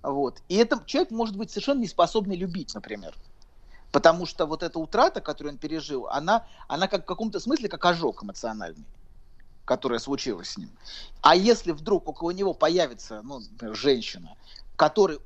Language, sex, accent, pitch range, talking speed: Russian, male, native, 145-205 Hz, 155 wpm